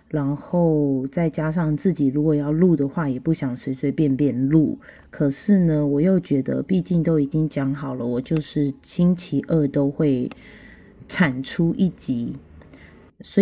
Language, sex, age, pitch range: Chinese, female, 20-39, 140-170 Hz